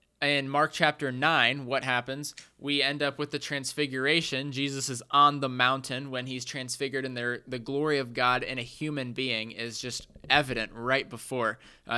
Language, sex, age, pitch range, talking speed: English, male, 20-39, 130-160 Hz, 175 wpm